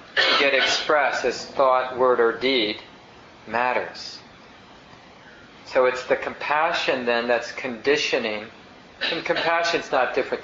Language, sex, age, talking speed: English, male, 40-59, 120 wpm